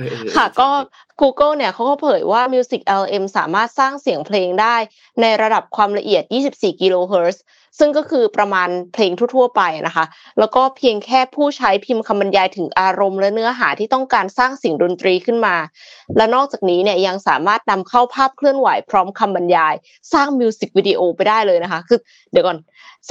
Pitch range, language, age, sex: 185-255 Hz, Thai, 20-39, female